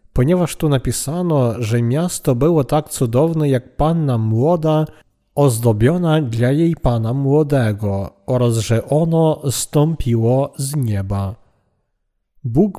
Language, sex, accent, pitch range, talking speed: Polish, male, native, 120-155 Hz, 110 wpm